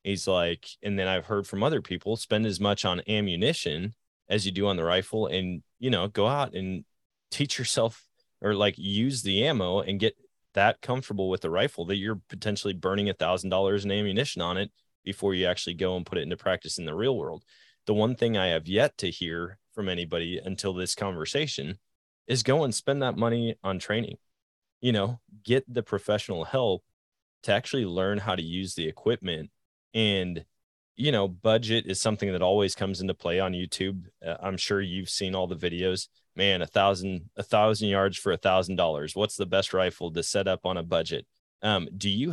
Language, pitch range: English, 90-105 Hz